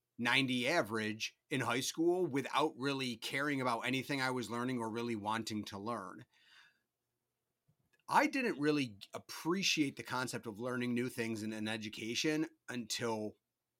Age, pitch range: 30-49, 115-140 Hz